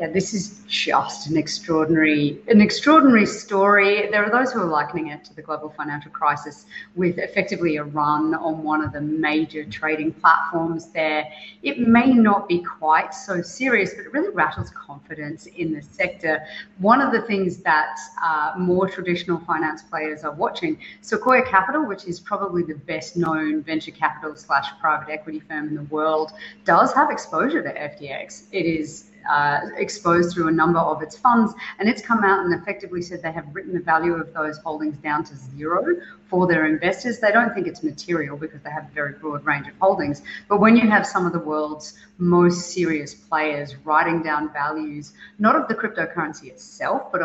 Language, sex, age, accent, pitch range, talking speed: English, female, 30-49, Australian, 155-195 Hz, 185 wpm